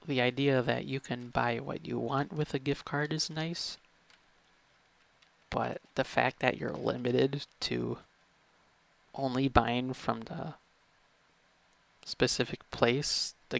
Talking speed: 130 wpm